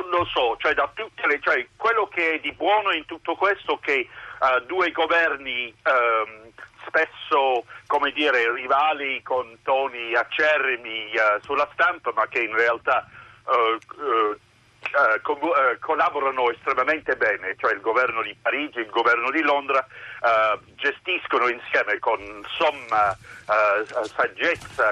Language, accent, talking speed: Italian, native, 140 wpm